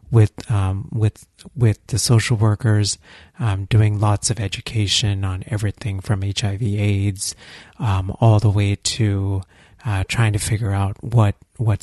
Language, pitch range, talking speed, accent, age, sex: English, 100-115 Hz, 140 wpm, American, 30-49, male